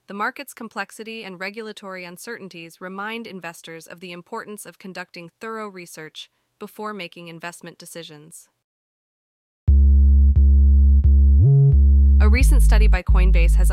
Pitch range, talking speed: 165-210 Hz, 110 wpm